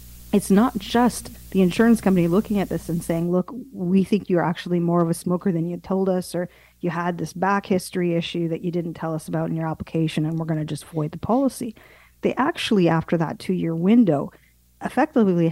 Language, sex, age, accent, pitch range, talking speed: English, female, 40-59, American, 165-215 Hz, 215 wpm